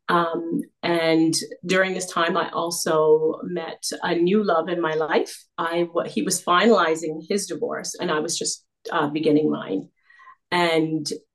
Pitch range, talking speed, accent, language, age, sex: 160-215 Hz, 150 wpm, American, English, 40-59, female